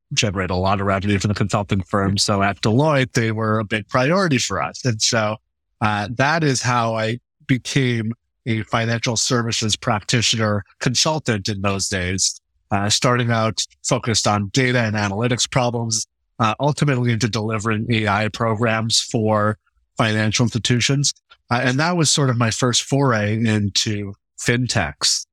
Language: English